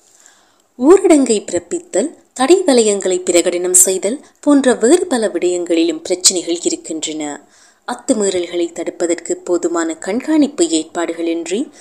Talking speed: 80 wpm